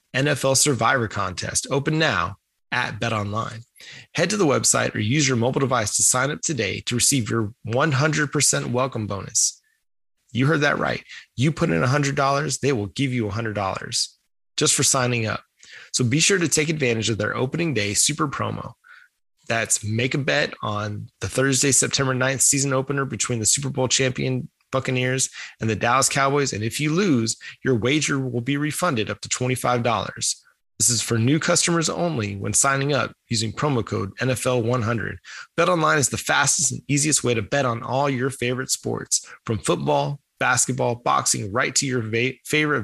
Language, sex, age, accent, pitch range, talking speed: English, male, 20-39, American, 115-140 Hz, 180 wpm